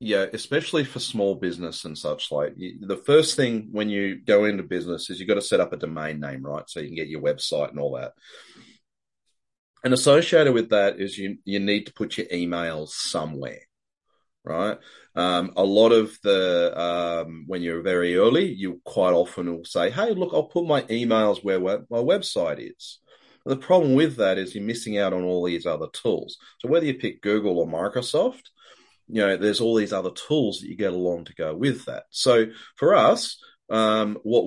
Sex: male